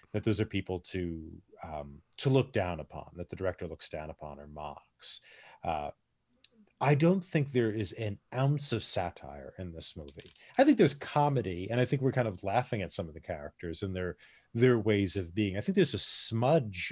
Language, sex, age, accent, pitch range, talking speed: English, male, 30-49, American, 95-125 Hz, 205 wpm